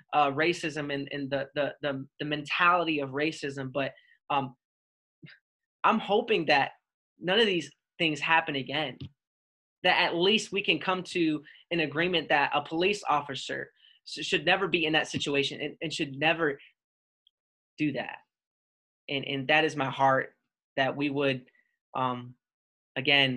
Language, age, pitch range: English, 20-39, 135-160 Hz